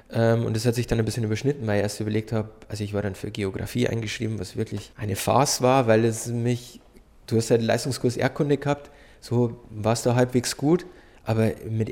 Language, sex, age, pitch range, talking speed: German, male, 20-39, 110-130 Hz, 215 wpm